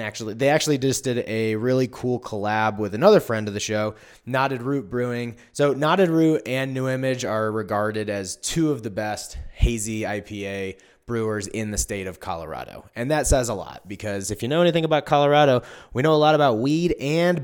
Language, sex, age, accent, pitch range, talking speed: English, male, 20-39, American, 105-135 Hz, 200 wpm